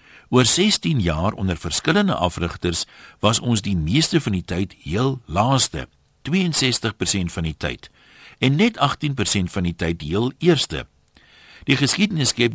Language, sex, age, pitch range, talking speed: Dutch, male, 60-79, 90-130 Hz, 145 wpm